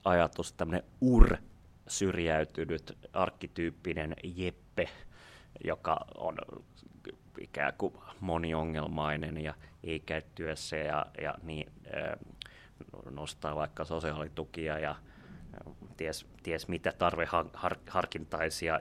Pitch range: 80-90 Hz